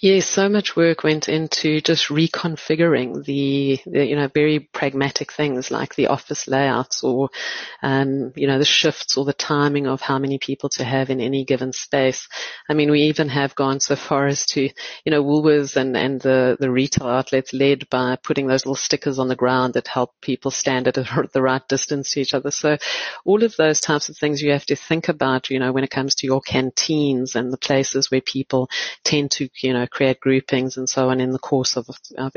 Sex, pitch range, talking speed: female, 130-145 Hz, 215 wpm